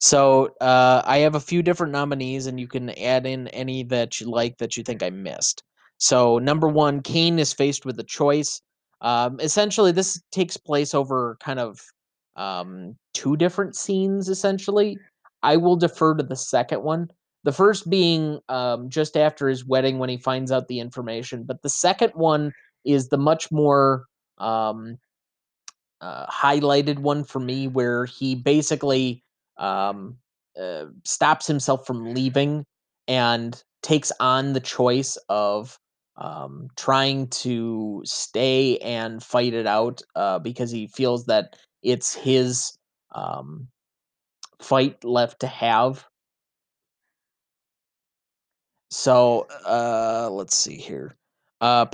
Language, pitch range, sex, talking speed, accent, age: English, 125-155 Hz, male, 140 wpm, American, 20-39